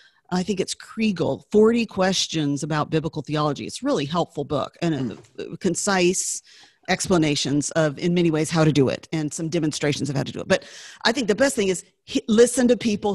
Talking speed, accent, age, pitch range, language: 195 wpm, American, 50-69, 165-210 Hz, English